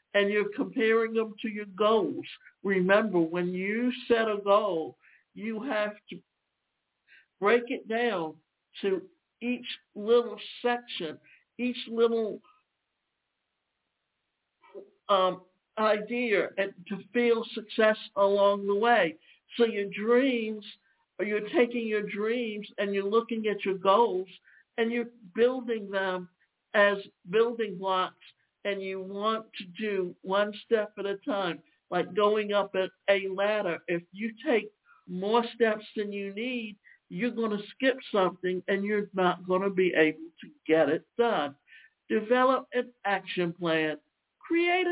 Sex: male